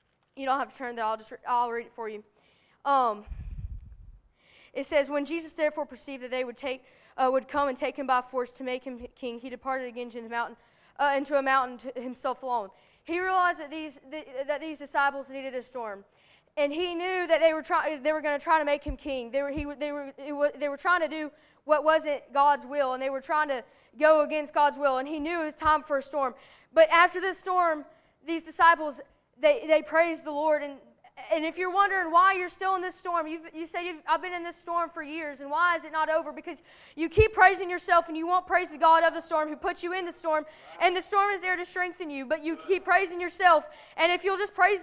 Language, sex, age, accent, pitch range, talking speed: English, female, 20-39, American, 280-345 Hz, 250 wpm